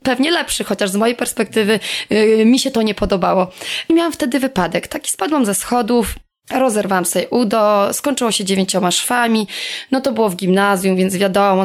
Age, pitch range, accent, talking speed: 20-39, 200-255 Hz, native, 175 wpm